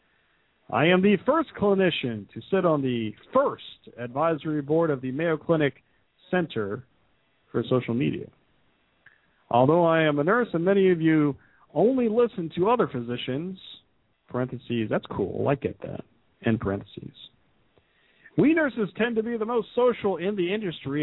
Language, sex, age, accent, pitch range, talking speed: English, male, 50-69, American, 130-200 Hz, 150 wpm